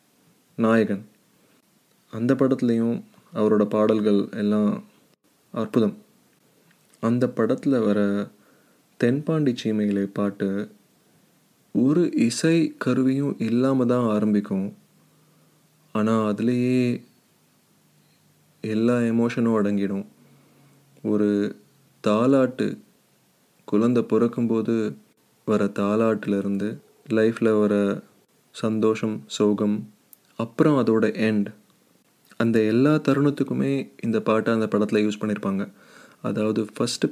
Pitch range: 105-120 Hz